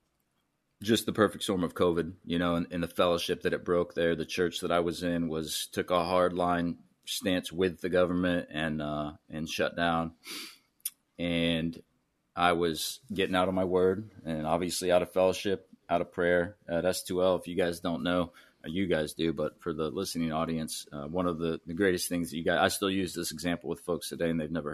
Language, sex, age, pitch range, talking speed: English, male, 30-49, 85-95 Hz, 220 wpm